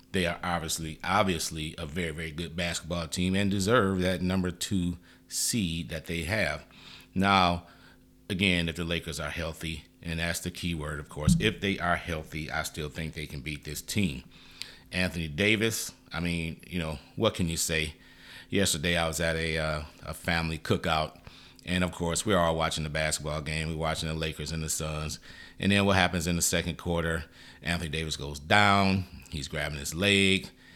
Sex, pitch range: male, 80-90 Hz